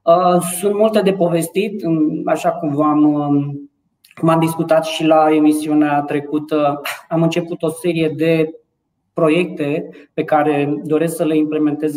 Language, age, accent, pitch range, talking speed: Romanian, 20-39, native, 150-170 Hz, 125 wpm